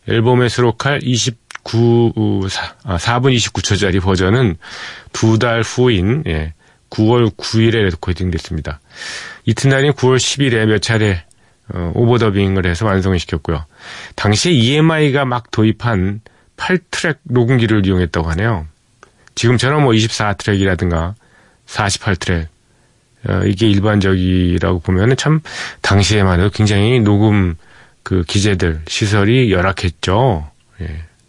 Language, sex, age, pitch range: Korean, male, 40-59, 95-120 Hz